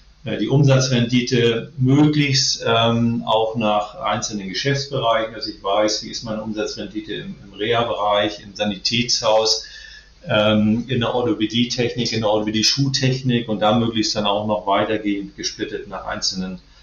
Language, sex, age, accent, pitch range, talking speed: German, male, 40-59, German, 105-120 Hz, 140 wpm